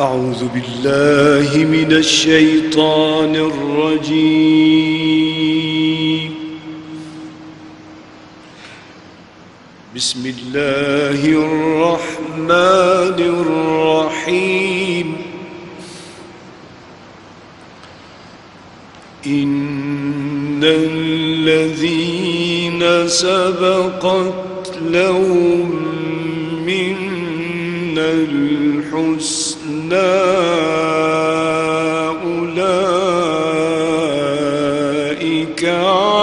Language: Arabic